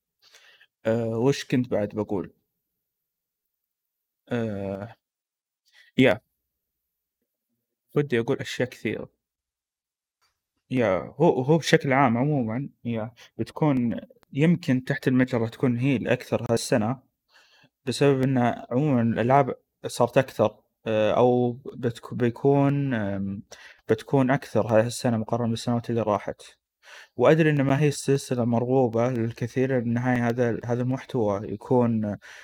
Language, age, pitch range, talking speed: Arabic, 20-39, 115-135 Hz, 100 wpm